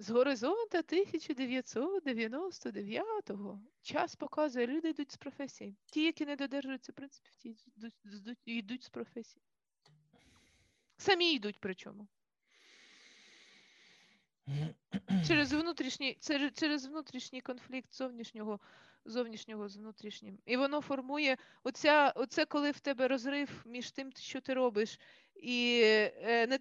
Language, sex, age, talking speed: Ukrainian, female, 20-39, 105 wpm